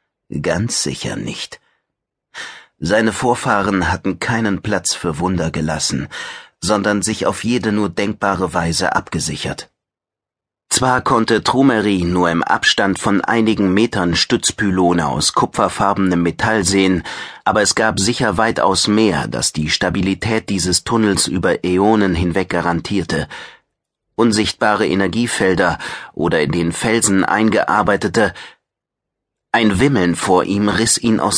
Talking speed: 120 wpm